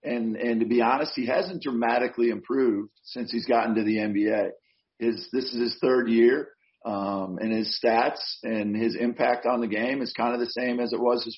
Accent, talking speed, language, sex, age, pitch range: American, 210 wpm, English, male, 40-59, 115-125 Hz